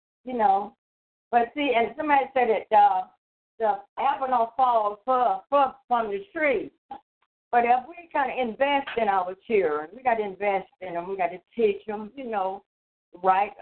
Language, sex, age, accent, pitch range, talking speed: English, female, 50-69, American, 200-265 Hz, 170 wpm